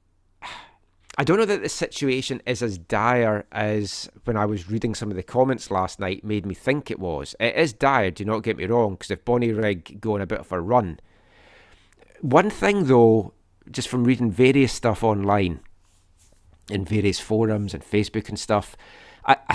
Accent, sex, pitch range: British, male, 95-120 Hz